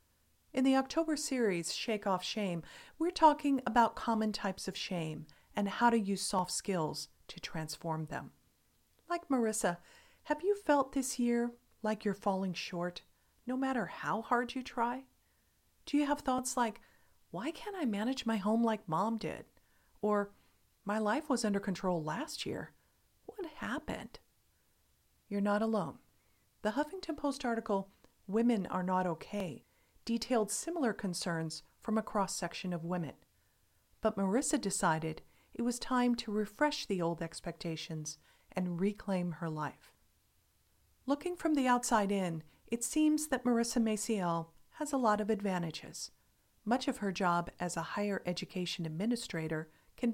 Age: 40-59